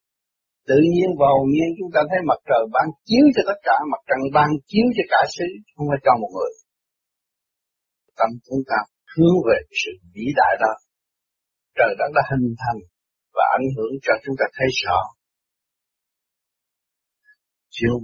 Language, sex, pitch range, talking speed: Vietnamese, male, 125-170 Hz, 165 wpm